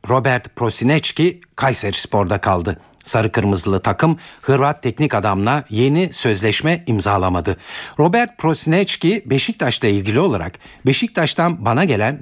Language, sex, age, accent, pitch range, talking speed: Turkish, male, 60-79, native, 105-155 Hz, 110 wpm